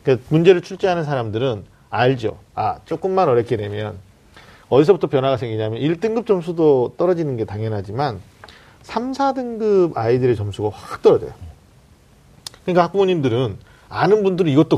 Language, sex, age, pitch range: Korean, male, 40-59, 115-175 Hz